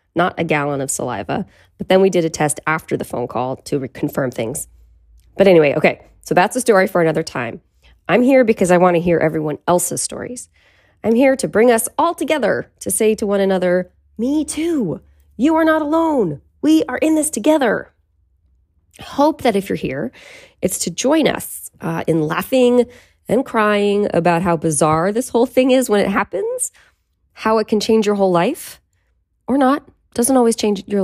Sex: female